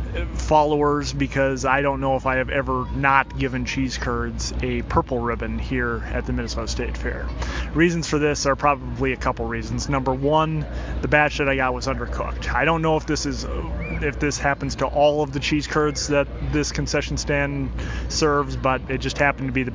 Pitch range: 125-145 Hz